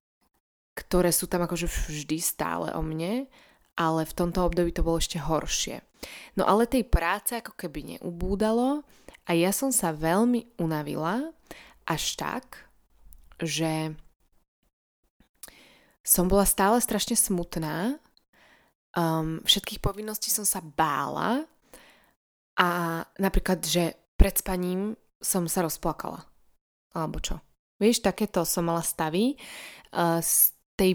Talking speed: 110 wpm